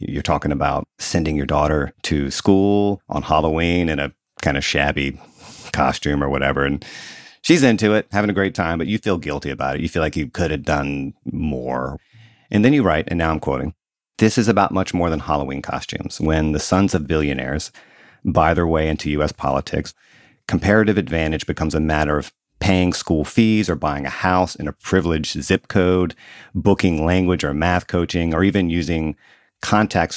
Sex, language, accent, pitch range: male, English, American, 75-100 Hz